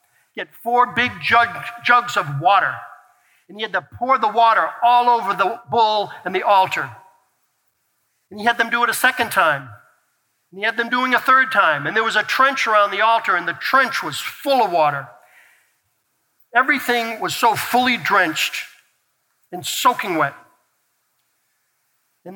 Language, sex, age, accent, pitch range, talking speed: English, male, 50-69, American, 190-235 Hz, 165 wpm